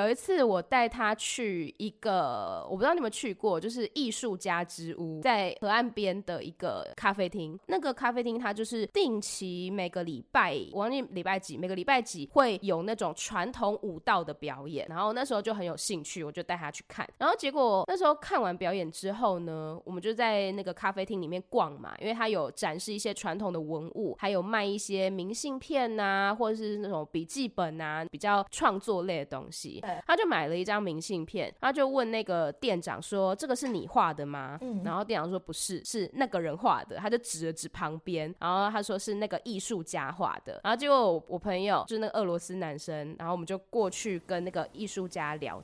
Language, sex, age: Chinese, female, 20-39